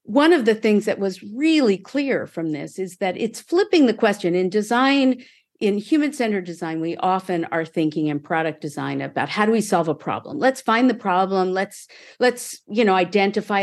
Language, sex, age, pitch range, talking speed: Swedish, female, 50-69, 170-230 Hz, 200 wpm